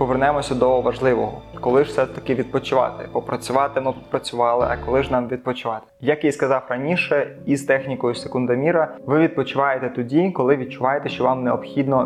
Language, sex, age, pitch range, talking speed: Ukrainian, male, 20-39, 125-145 Hz, 150 wpm